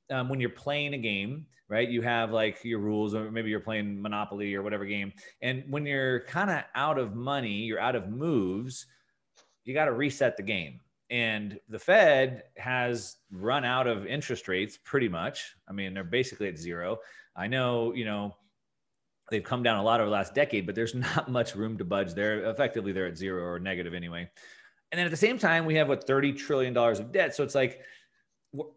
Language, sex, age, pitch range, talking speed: English, male, 30-49, 100-130 Hz, 210 wpm